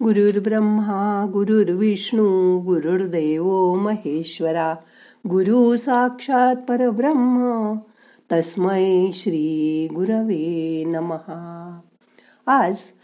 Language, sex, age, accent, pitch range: Marathi, female, 60-79, native, 165-235 Hz